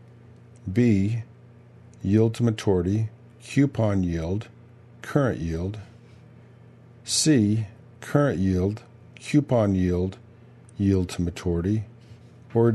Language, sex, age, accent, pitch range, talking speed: English, male, 50-69, American, 100-120 Hz, 80 wpm